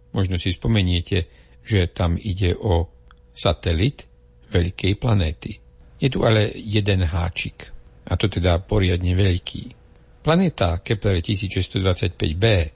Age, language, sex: 60-79, Slovak, male